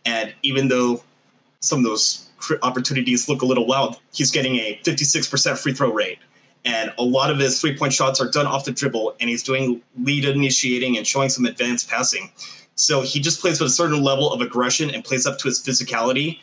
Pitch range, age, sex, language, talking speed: 120-135 Hz, 20-39, male, English, 205 wpm